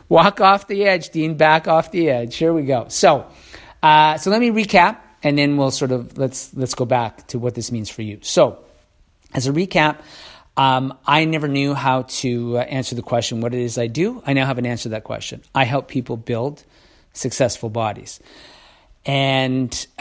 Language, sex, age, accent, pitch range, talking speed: English, male, 40-59, American, 125-155 Hz, 200 wpm